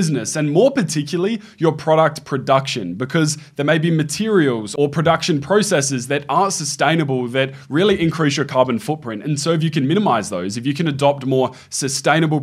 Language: English